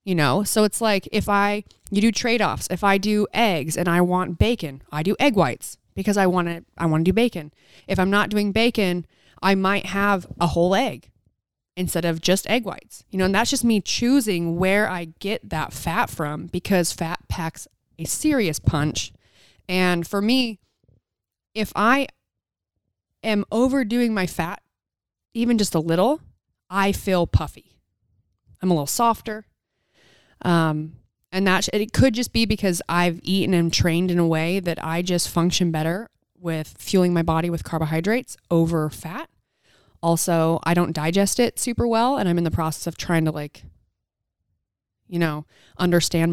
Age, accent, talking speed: 30-49, American, 175 wpm